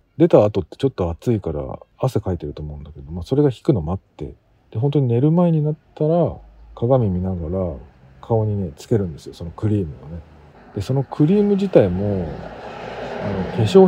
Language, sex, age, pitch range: Japanese, male, 40-59, 85-135 Hz